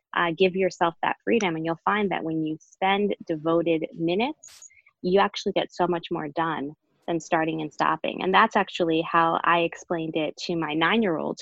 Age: 20-39